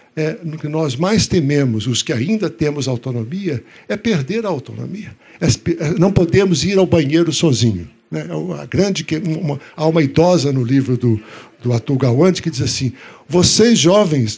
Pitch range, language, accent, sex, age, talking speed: 130-180 Hz, Portuguese, Brazilian, male, 60-79, 145 wpm